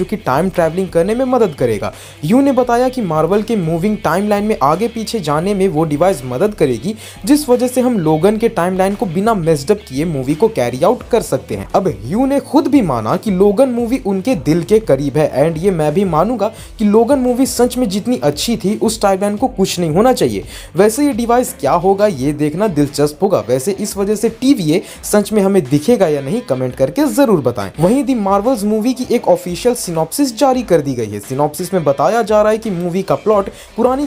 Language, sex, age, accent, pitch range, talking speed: Hindi, male, 20-39, native, 155-230 Hz, 55 wpm